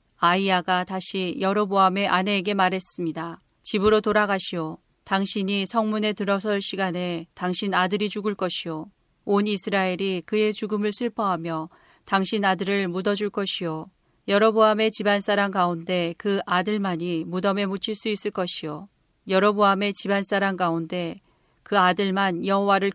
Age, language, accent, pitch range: 40-59, Korean, native, 180-210 Hz